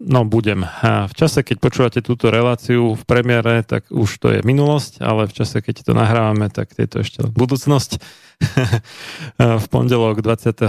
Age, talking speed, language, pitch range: 40-59, 155 wpm, Slovak, 105-120 Hz